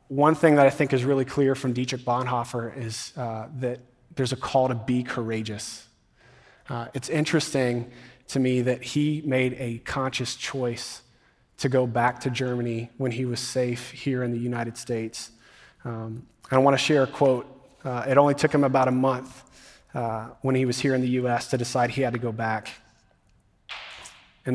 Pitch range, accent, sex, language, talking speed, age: 120-135 Hz, American, male, English, 190 wpm, 30-49